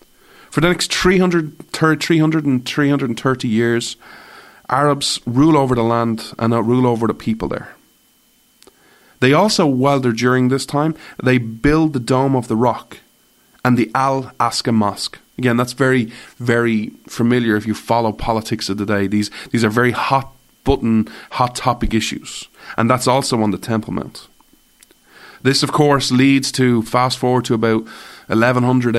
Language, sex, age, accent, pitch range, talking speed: English, male, 30-49, Irish, 115-135 Hz, 155 wpm